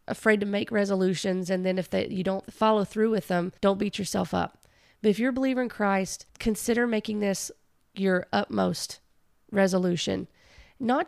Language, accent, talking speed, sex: English, American, 175 wpm, female